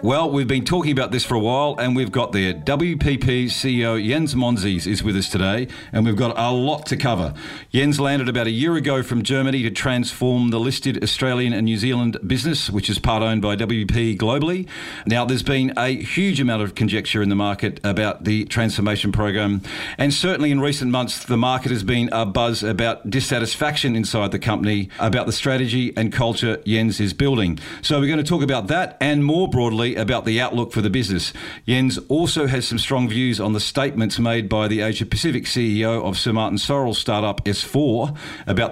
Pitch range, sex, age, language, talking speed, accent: 110-135 Hz, male, 50-69, English, 200 wpm, Australian